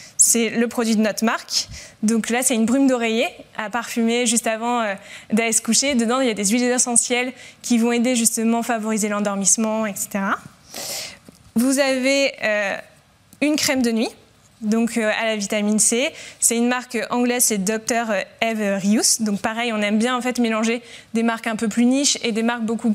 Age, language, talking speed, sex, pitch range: 20-39, French, 195 wpm, female, 215-245 Hz